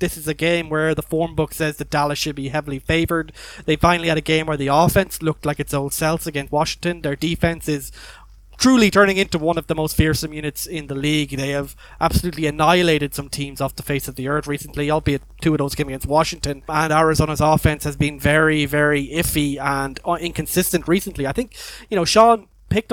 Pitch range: 145-170 Hz